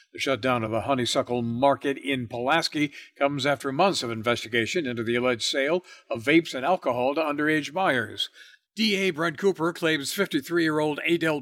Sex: male